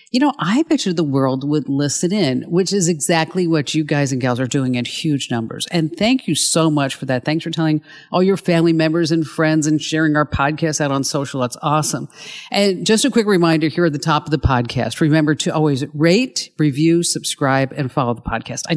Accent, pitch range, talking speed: American, 145-180 Hz, 225 wpm